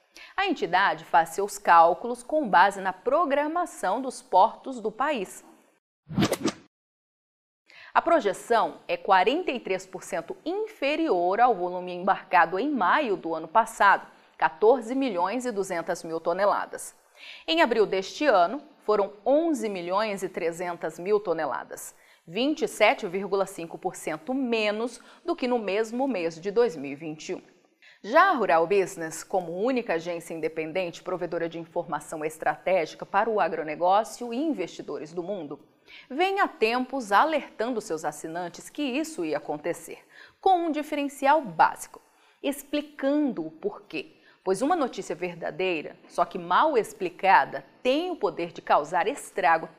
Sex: female